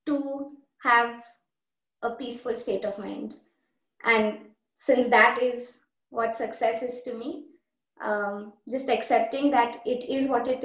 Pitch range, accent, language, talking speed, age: 230-290 Hz, Indian, English, 135 wpm, 20-39